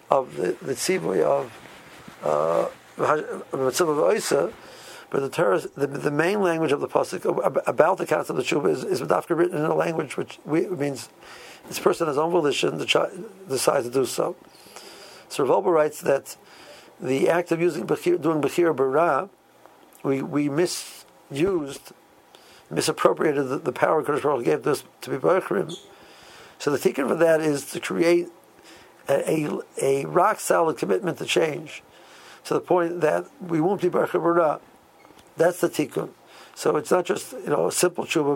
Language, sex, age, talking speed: English, male, 60-79, 165 wpm